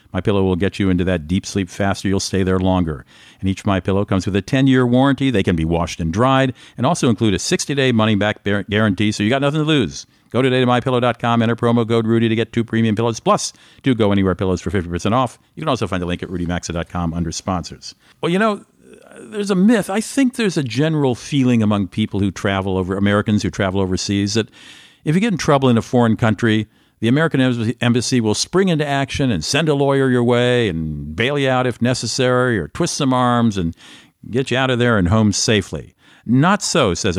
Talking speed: 220 wpm